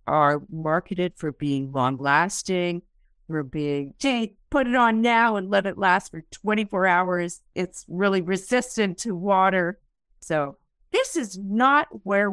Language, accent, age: English, American, 50-69